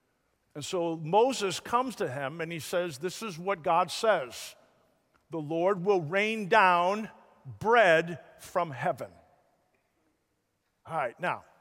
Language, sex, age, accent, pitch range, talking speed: English, male, 50-69, American, 180-245 Hz, 130 wpm